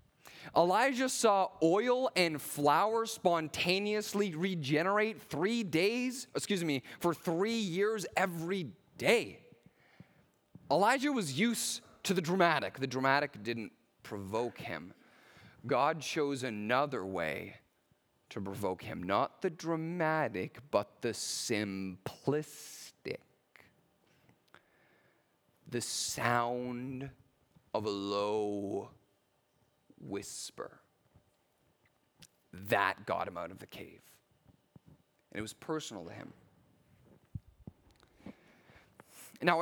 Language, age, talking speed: English, 30-49, 90 wpm